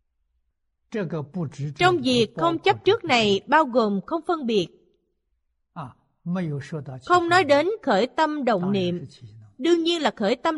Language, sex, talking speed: Vietnamese, female, 130 wpm